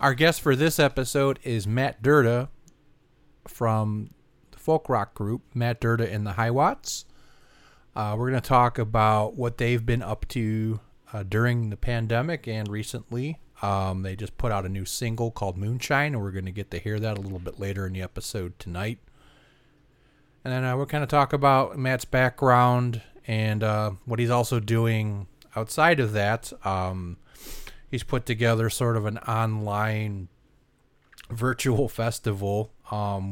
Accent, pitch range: American, 100-125 Hz